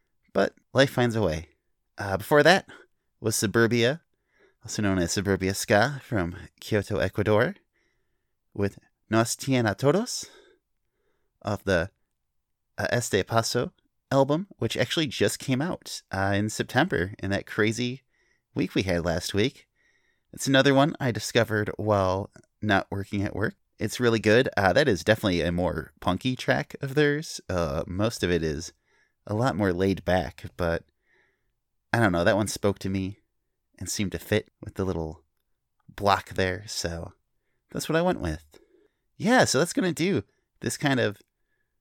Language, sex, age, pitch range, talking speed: English, male, 30-49, 95-125 Hz, 155 wpm